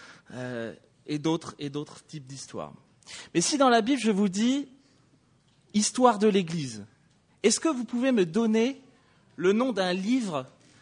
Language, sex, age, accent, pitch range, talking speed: English, male, 30-49, French, 165-230 Hz, 150 wpm